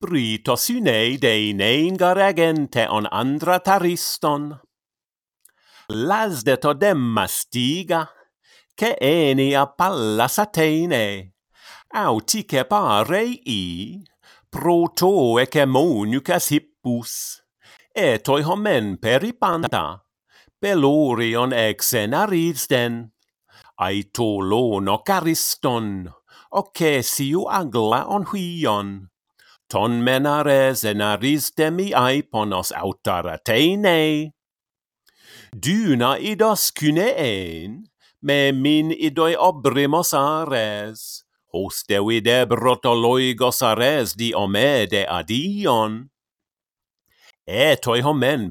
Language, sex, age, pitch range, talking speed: English, male, 50-69, 115-175 Hz, 80 wpm